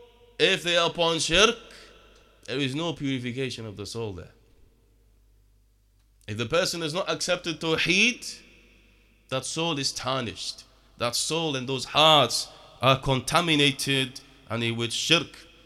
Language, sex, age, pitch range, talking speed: English, male, 30-49, 115-155 Hz, 135 wpm